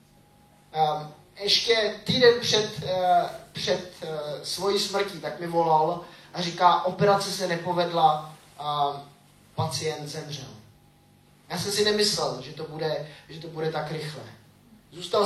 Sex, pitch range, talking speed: male, 150-200 Hz, 135 wpm